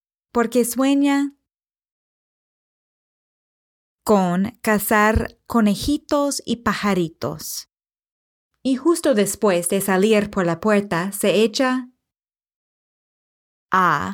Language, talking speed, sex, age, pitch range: English, 75 wpm, female, 30-49, 180-235 Hz